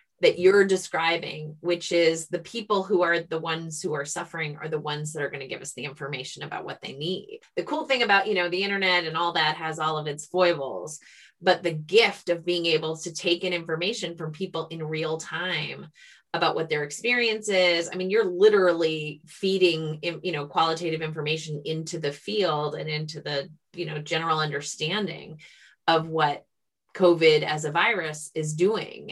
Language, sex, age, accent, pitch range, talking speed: English, female, 20-39, American, 155-190 Hz, 190 wpm